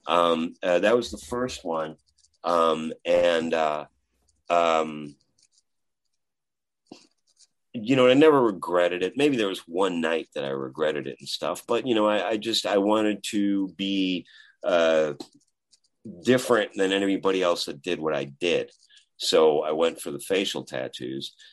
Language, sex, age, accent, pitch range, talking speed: English, male, 40-59, American, 80-110 Hz, 155 wpm